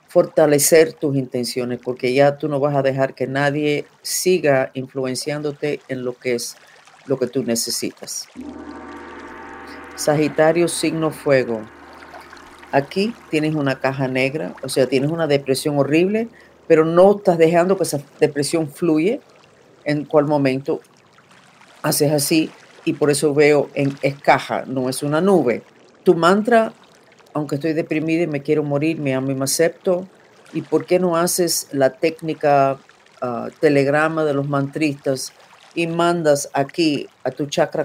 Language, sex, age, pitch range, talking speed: Spanish, female, 50-69, 135-165 Hz, 145 wpm